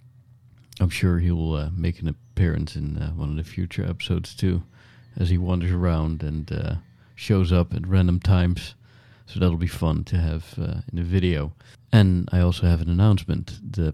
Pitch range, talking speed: 85-115 Hz, 180 wpm